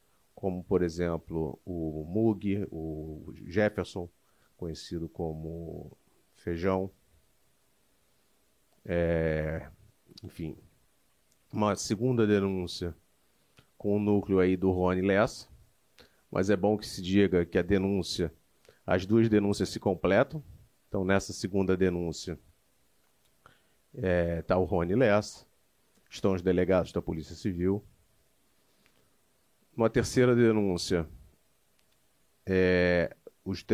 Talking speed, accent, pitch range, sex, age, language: 100 wpm, Brazilian, 90-105 Hz, male, 40-59, Portuguese